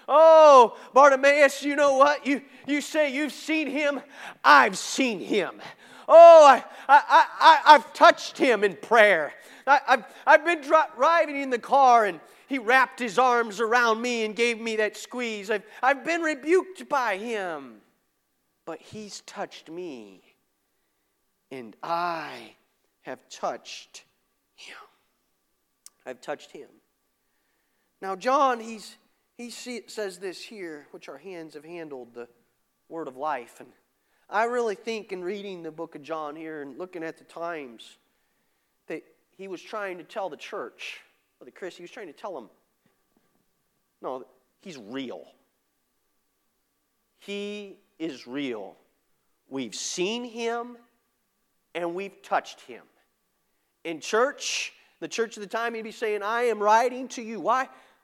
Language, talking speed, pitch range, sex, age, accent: English, 145 wpm, 185-275 Hz, male, 40-59, American